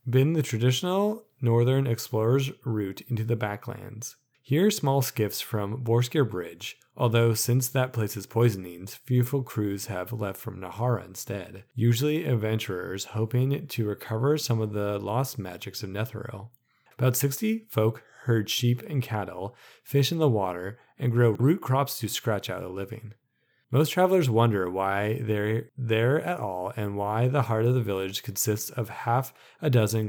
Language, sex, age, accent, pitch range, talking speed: English, male, 30-49, American, 105-130 Hz, 160 wpm